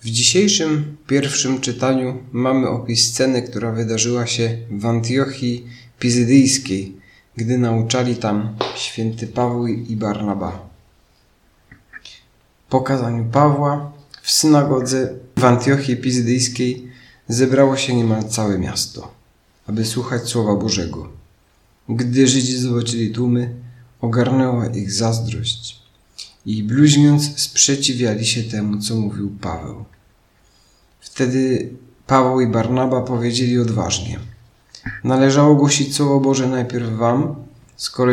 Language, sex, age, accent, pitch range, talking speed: Polish, male, 40-59, native, 115-130 Hz, 100 wpm